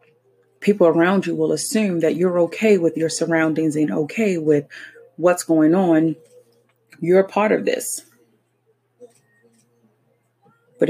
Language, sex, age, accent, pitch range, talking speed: English, female, 30-49, American, 155-230 Hz, 125 wpm